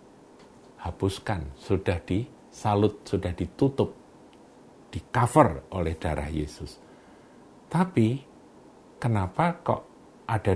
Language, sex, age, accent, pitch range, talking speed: Indonesian, male, 50-69, native, 90-115 Hz, 80 wpm